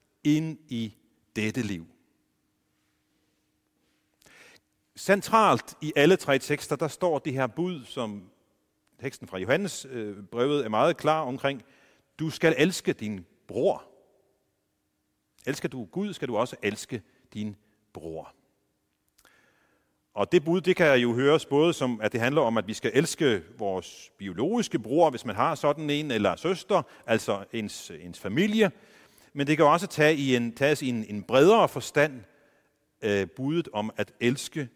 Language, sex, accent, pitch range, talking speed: Danish, male, native, 105-155 Hz, 140 wpm